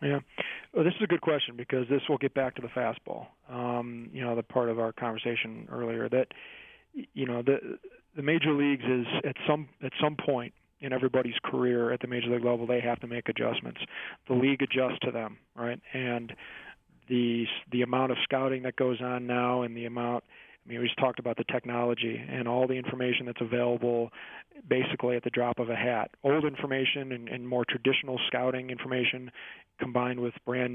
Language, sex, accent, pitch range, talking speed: English, male, American, 120-130 Hz, 195 wpm